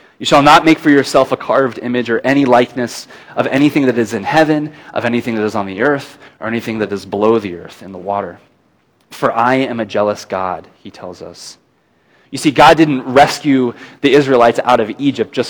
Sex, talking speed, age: male, 215 wpm, 20-39